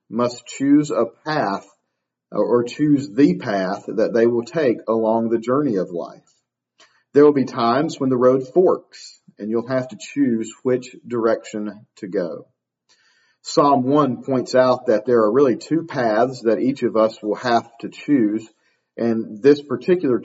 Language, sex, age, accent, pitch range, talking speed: English, male, 40-59, American, 110-130 Hz, 165 wpm